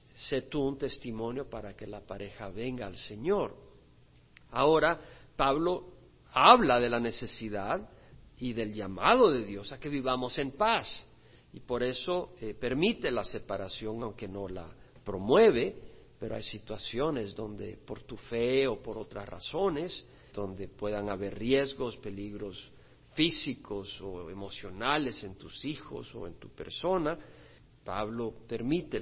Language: Spanish